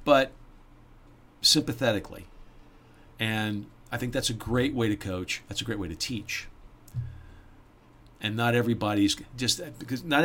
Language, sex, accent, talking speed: English, male, American, 135 wpm